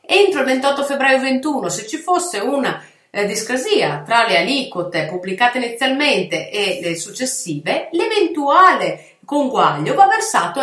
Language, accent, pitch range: Italian, native, 170-255 Hz